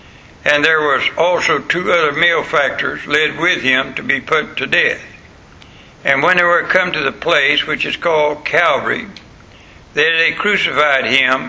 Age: 60-79